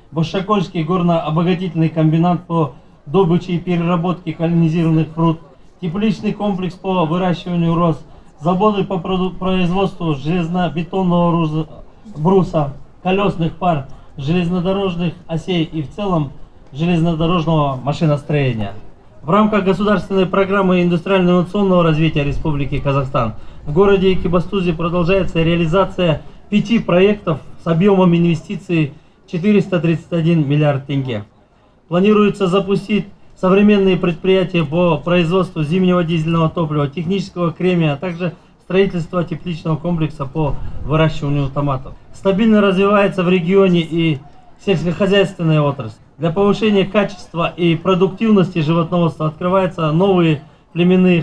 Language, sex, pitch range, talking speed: Russian, male, 160-190 Hz, 100 wpm